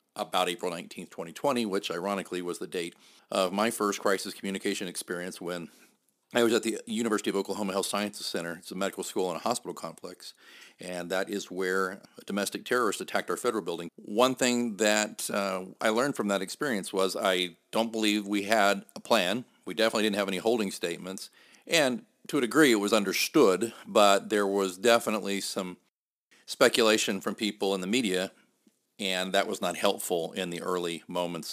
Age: 40-59